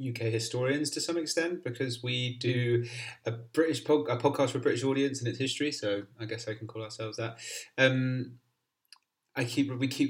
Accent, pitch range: British, 110-125 Hz